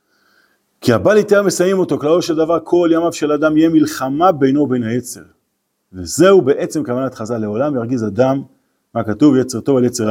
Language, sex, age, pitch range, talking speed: Hebrew, male, 40-59, 105-165 Hz, 180 wpm